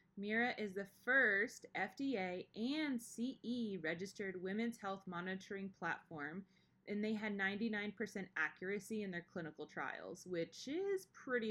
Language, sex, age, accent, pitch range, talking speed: English, female, 20-39, American, 175-215 Hz, 120 wpm